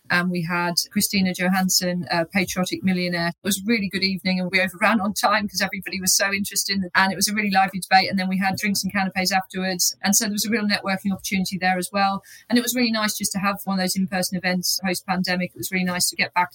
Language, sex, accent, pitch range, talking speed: English, female, British, 185-200 Hz, 260 wpm